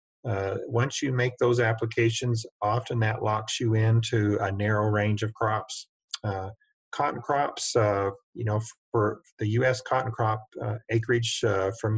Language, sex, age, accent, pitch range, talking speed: English, male, 50-69, American, 105-120 Hz, 155 wpm